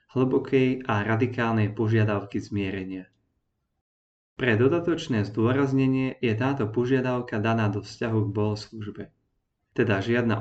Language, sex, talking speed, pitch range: Slovak, male, 105 wpm, 105-130 Hz